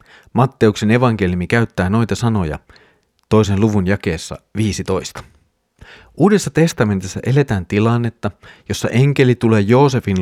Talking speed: 100 wpm